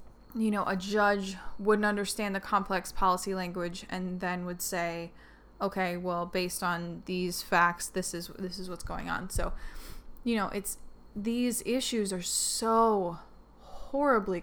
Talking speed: 150 wpm